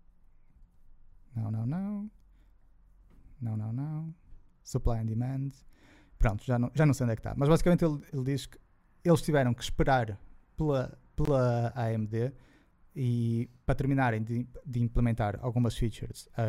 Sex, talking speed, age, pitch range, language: male, 150 wpm, 20-39, 120-160 Hz, Portuguese